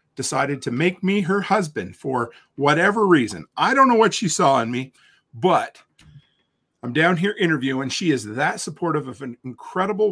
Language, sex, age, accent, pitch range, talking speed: English, male, 40-59, American, 125-175 Hz, 170 wpm